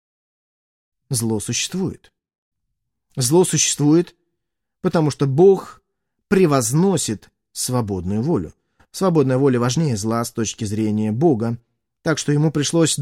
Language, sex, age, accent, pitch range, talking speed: Russian, male, 30-49, native, 140-185 Hz, 100 wpm